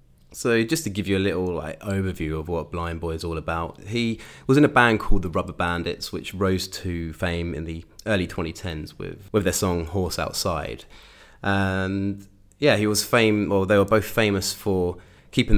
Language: English